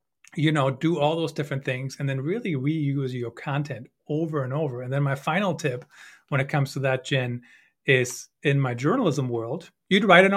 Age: 40-59